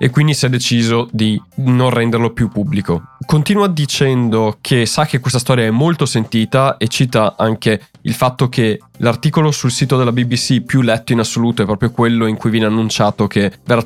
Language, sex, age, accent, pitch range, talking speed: Italian, male, 20-39, native, 110-130 Hz, 190 wpm